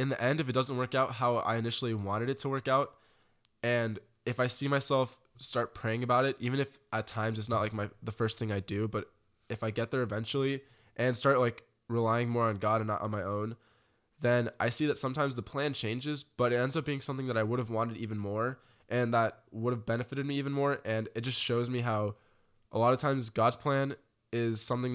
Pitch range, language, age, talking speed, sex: 110-130 Hz, English, 20-39, 235 wpm, male